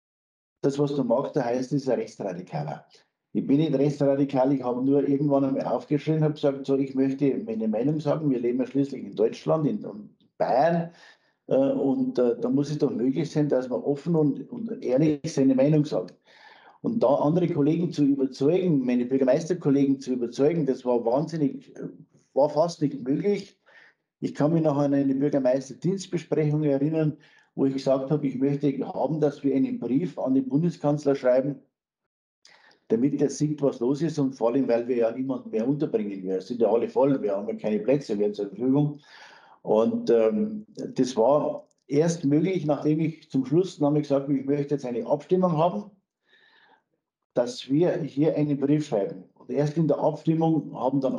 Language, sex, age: German, male, 50-69